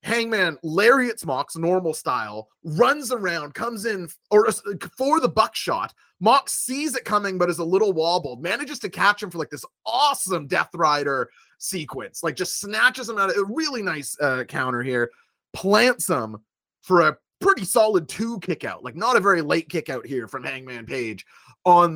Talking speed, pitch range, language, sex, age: 180 wpm, 130-195 Hz, English, male, 30-49